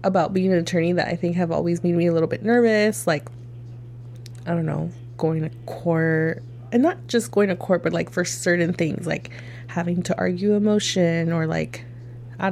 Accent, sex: American, female